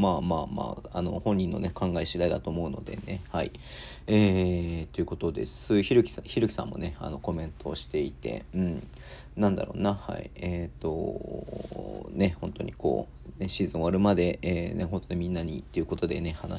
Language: Japanese